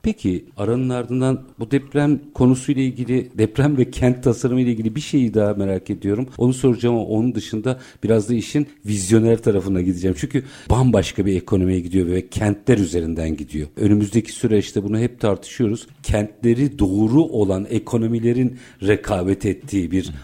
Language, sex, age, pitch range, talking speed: Turkish, male, 50-69, 100-125 Hz, 150 wpm